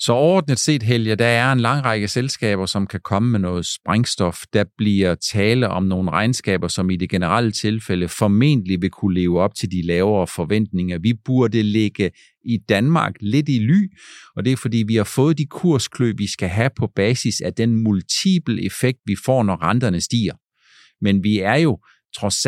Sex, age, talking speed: male, 50-69, 190 wpm